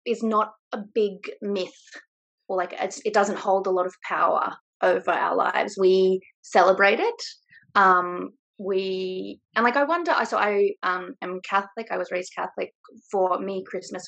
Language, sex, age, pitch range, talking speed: English, female, 20-39, 180-210 Hz, 165 wpm